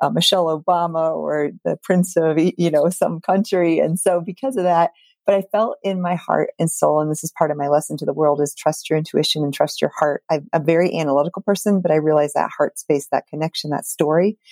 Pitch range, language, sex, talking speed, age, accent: 150-180 Hz, English, female, 235 wpm, 40-59, American